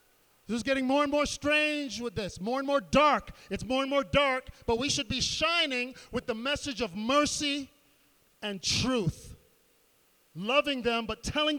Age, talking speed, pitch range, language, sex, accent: 40-59, 175 wpm, 215-275 Hz, English, male, American